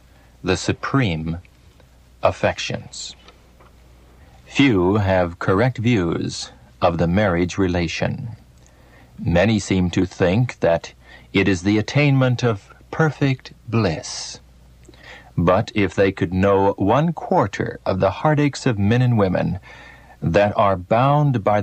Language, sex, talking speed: English, male, 115 wpm